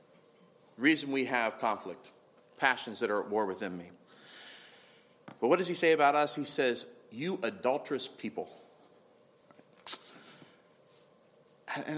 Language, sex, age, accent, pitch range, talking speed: English, male, 40-59, American, 135-220 Hz, 120 wpm